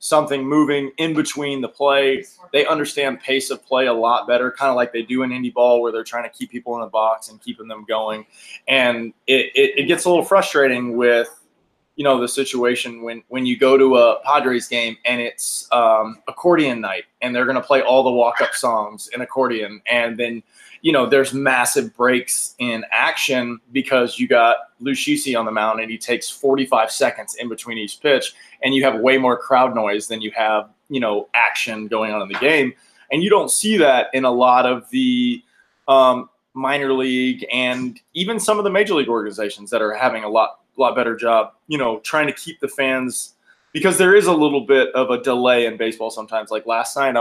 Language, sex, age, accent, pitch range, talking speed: English, male, 20-39, American, 115-140 Hz, 210 wpm